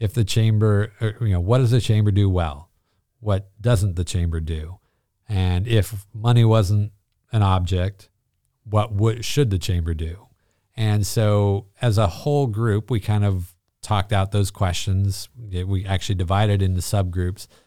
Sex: male